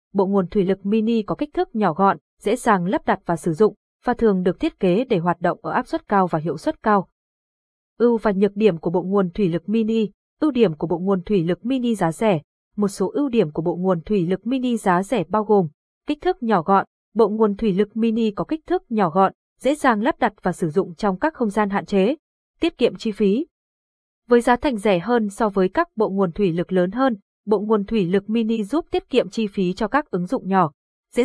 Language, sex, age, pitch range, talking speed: Vietnamese, female, 20-39, 190-240 Hz, 245 wpm